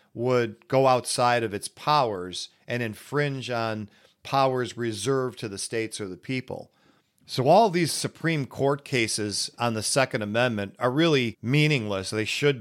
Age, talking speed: 40-59, 150 wpm